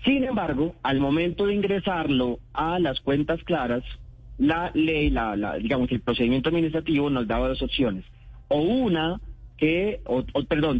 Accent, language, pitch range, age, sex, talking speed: Colombian, Spanish, 125-165 Hz, 30-49, male, 160 wpm